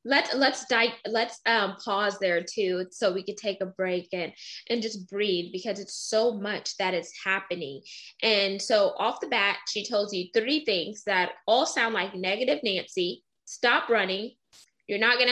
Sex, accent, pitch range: female, American, 195-235 Hz